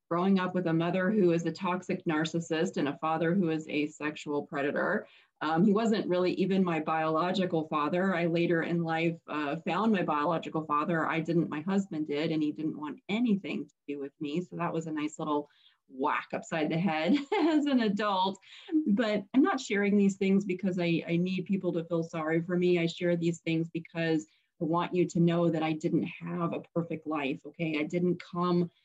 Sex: female